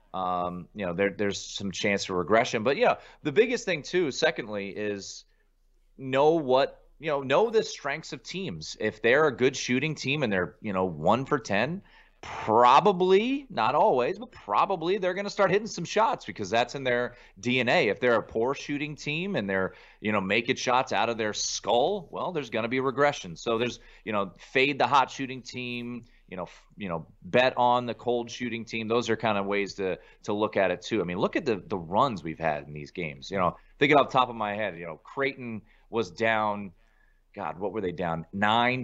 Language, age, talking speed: English, 30-49, 220 wpm